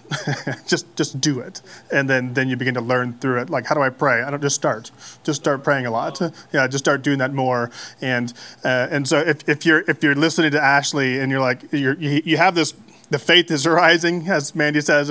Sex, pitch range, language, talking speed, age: male, 135-170 Hz, English, 240 wpm, 30-49